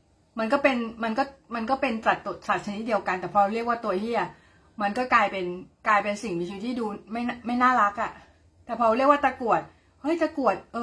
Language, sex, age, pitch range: Thai, female, 30-49, 180-250 Hz